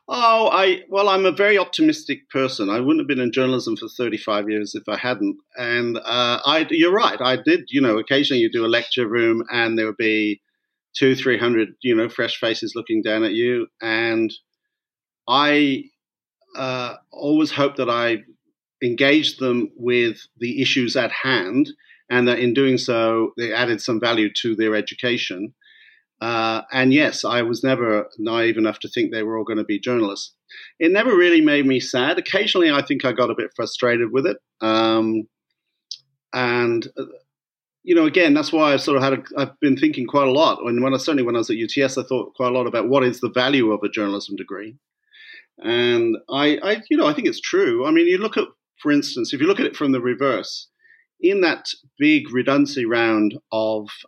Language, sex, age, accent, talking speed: English, male, 50-69, British, 200 wpm